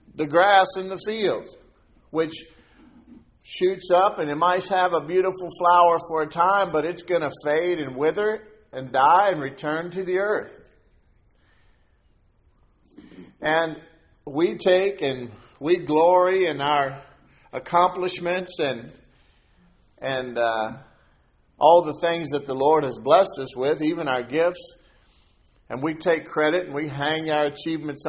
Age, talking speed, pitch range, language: 50-69, 140 wpm, 135-180 Hz, English